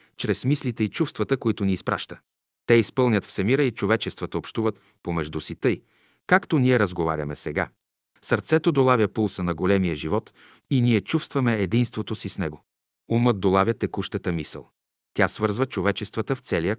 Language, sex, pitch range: Bulgarian, male, 95-125 Hz